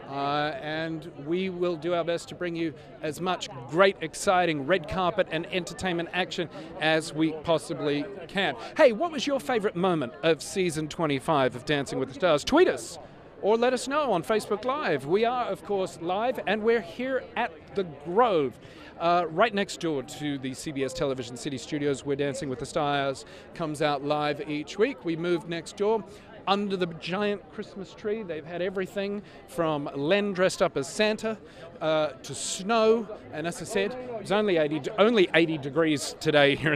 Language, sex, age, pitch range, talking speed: English, male, 40-59, 150-200 Hz, 180 wpm